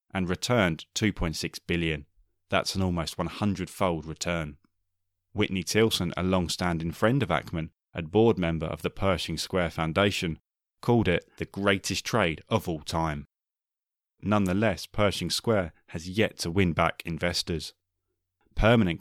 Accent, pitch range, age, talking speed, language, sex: British, 80-100 Hz, 20-39, 135 wpm, English, male